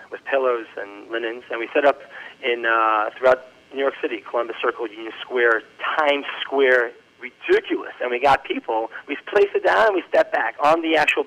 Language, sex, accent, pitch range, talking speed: English, male, American, 115-145 Hz, 190 wpm